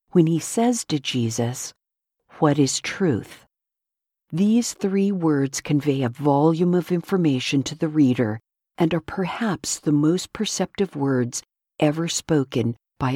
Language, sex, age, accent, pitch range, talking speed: English, female, 50-69, American, 135-190 Hz, 130 wpm